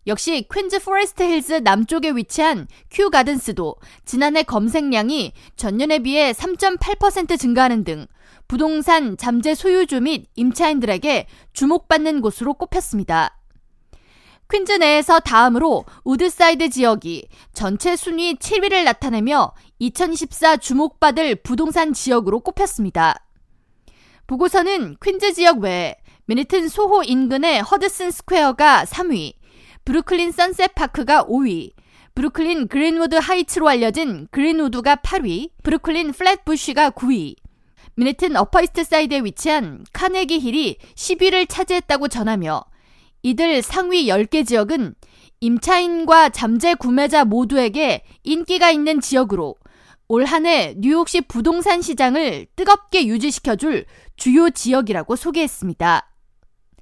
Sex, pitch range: female, 245-345 Hz